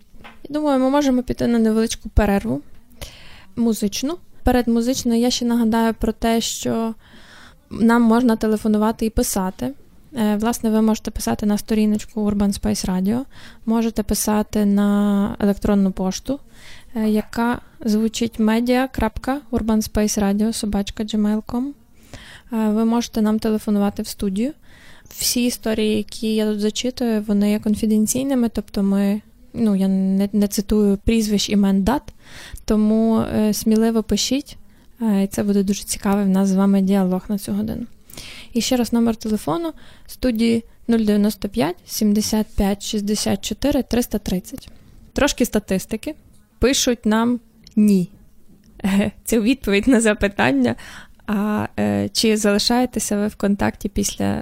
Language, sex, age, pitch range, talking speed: Ukrainian, female, 20-39, 205-235 Hz, 115 wpm